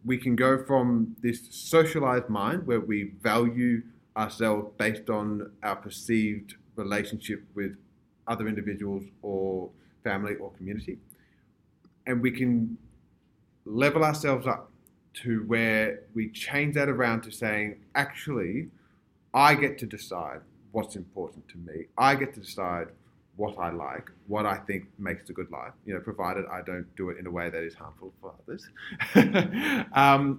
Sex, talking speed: male, 150 wpm